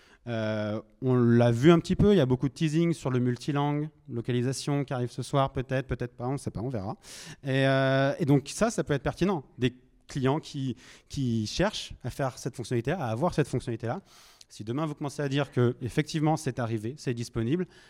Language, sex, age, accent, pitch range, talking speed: English, male, 30-49, French, 120-145 Hz, 210 wpm